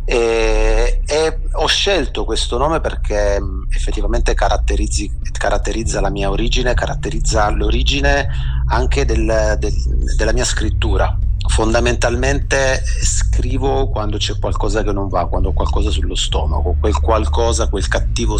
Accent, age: native, 30-49